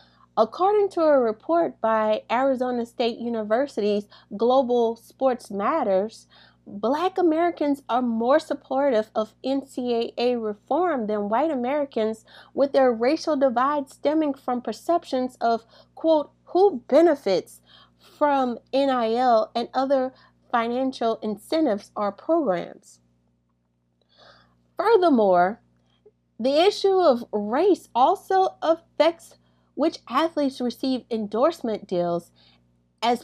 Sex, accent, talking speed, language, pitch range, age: female, American, 95 wpm, English, 210-295 Hz, 30-49